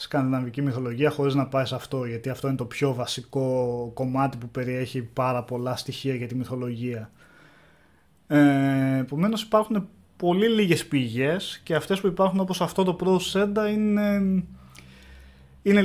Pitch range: 125-170 Hz